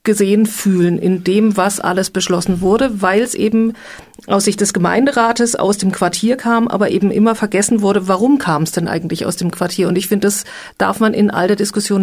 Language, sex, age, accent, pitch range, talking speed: German, female, 40-59, German, 185-215 Hz, 210 wpm